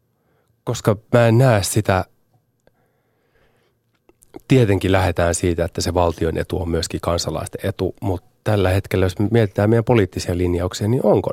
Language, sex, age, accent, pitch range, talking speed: Finnish, male, 30-49, native, 90-120 Hz, 145 wpm